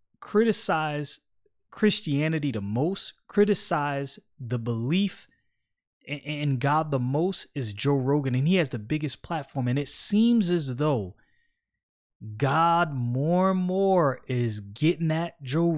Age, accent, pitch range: 30-49, American, 130-190 Hz